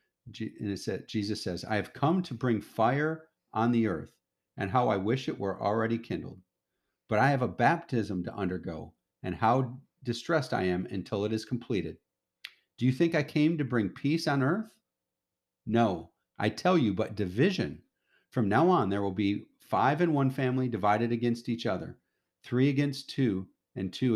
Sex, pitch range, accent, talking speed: male, 95-130 Hz, American, 180 wpm